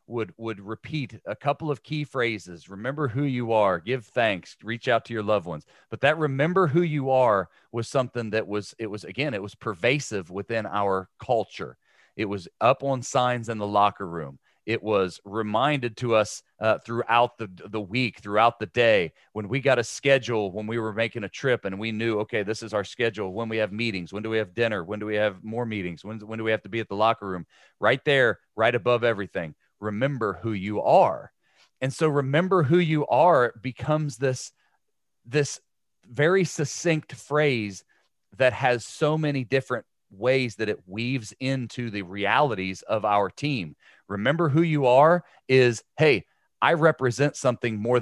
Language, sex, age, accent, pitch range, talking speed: English, male, 40-59, American, 105-135 Hz, 190 wpm